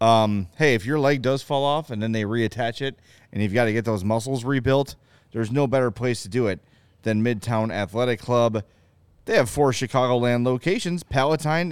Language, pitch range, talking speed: English, 110-140 Hz, 190 wpm